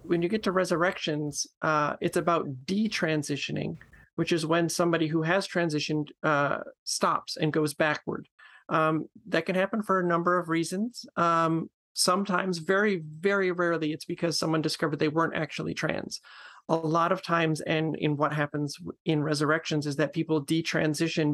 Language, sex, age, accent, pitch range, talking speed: English, male, 30-49, American, 150-175 Hz, 160 wpm